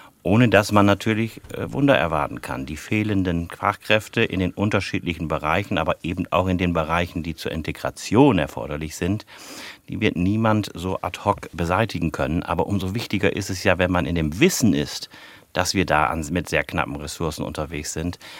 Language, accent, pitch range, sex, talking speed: German, German, 85-100 Hz, male, 175 wpm